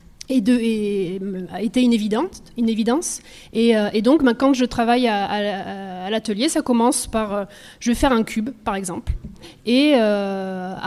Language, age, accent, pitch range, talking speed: French, 30-49, French, 205-245 Hz, 155 wpm